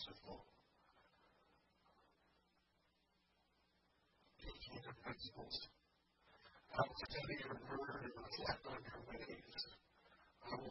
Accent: American